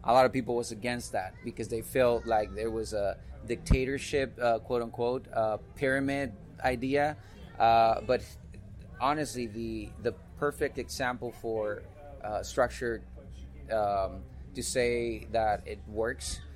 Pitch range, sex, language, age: 105-125 Hz, male, English, 30-49